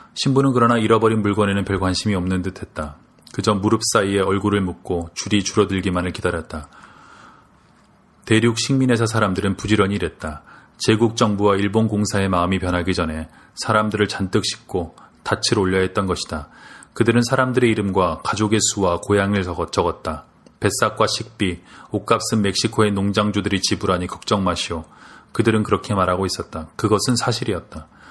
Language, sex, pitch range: Korean, male, 95-115 Hz